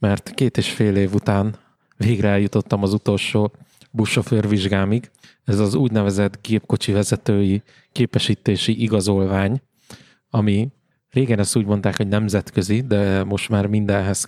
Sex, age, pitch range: male, 20-39, 105-125 Hz